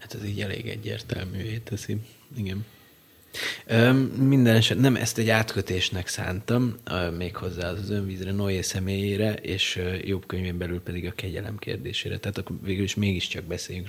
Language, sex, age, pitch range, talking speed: Hungarian, male, 30-49, 95-115 Hz, 145 wpm